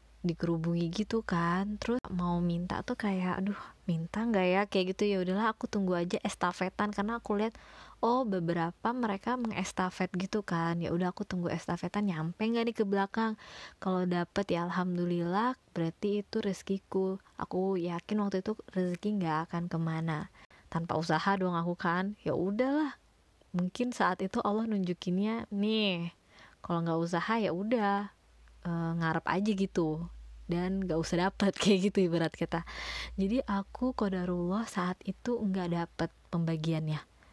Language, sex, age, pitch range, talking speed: Indonesian, female, 20-39, 175-210 Hz, 150 wpm